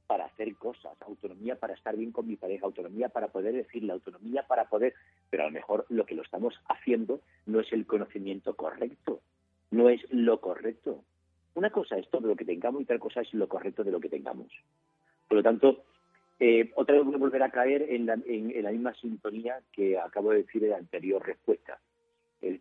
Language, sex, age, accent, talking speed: Spanish, male, 50-69, Spanish, 210 wpm